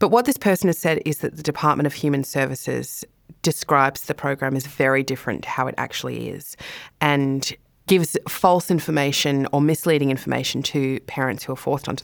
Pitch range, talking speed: 140-170 Hz, 185 wpm